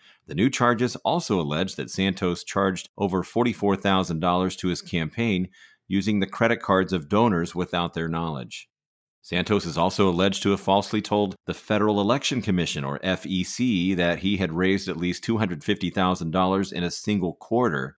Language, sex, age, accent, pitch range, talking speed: English, male, 40-59, American, 90-105 Hz, 155 wpm